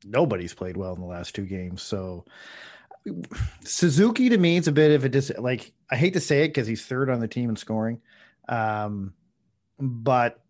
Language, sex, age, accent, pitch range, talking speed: English, male, 40-59, American, 105-135 Hz, 195 wpm